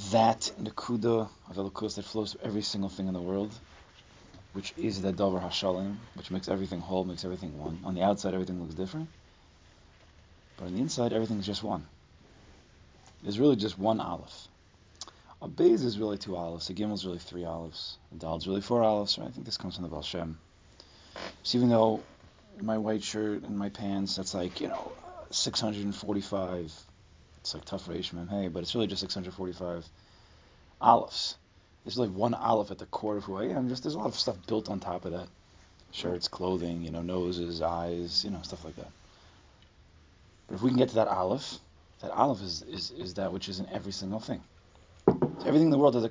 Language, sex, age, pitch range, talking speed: English, male, 30-49, 85-105 Hz, 205 wpm